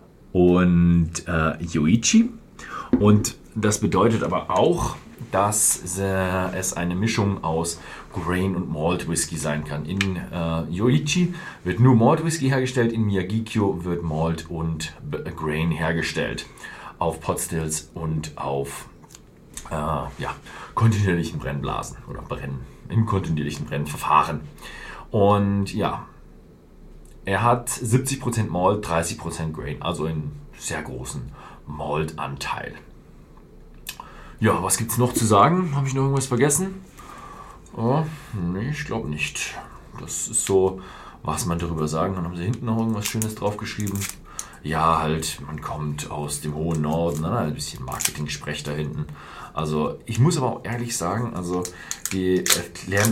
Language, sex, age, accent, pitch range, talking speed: German, male, 40-59, German, 80-110 Hz, 135 wpm